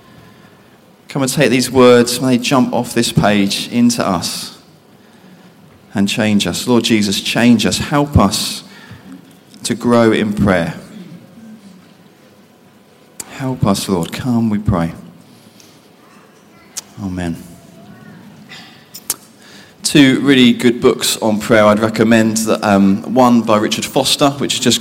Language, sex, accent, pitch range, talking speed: English, male, British, 110-165 Hz, 120 wpm